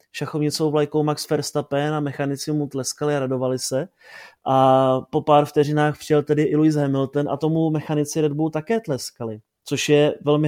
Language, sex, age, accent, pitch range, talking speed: Czech, male, 30-49, native, 140-155 Hz, 170 wpm